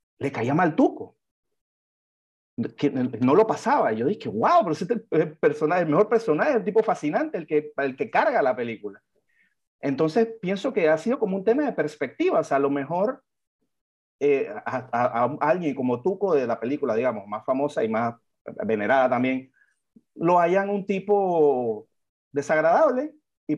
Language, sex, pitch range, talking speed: Spanish, male, 140-215 Hz, 165 wpm